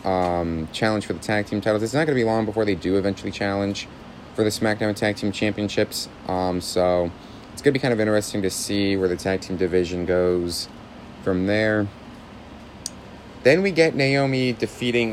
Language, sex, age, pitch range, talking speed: English, male, 30-49, 90-115 Hz, 190 wpm